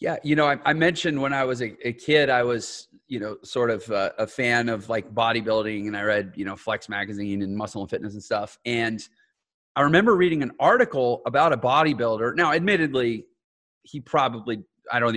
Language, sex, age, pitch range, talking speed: English, male, 30-49, 115-180 Hz, 200 wpm